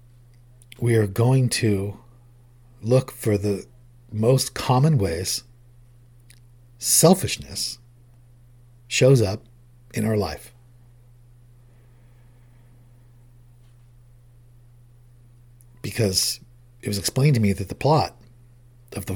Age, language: 50-69, English